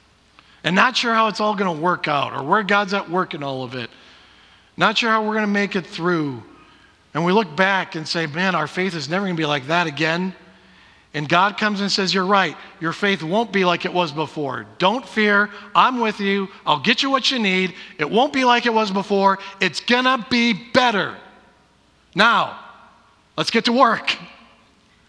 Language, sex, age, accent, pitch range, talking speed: English, male, 50-69, American, 170-225 Hz, 200 wpm